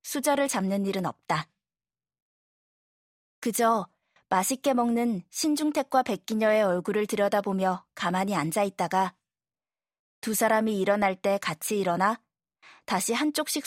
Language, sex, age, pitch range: Korean, female, 20-39, 195-255 Hz